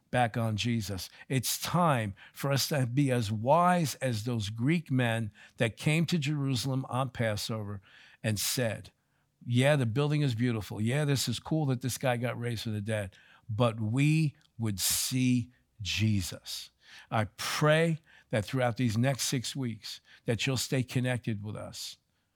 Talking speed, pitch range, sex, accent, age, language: 160 wpm, 110-135 Hz, male, American, 50-69, English